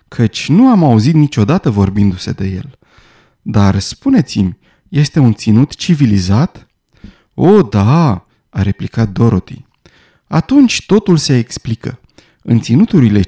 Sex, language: male, Romanian